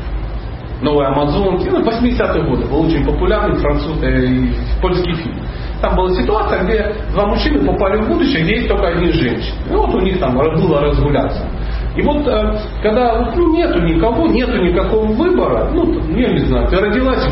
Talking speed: 165 wpm